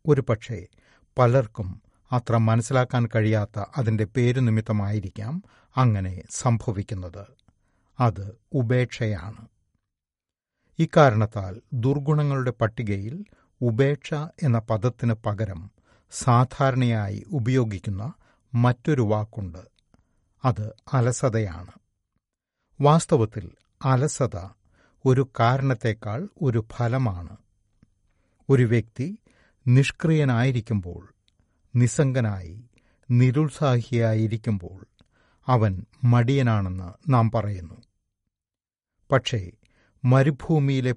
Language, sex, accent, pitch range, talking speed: Malayalam, male, native, 100-125 Hz, 60 wpm